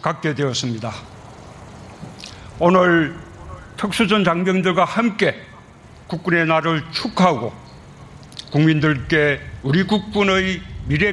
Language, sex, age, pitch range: Korean, male, 60-79, 145-185 Hz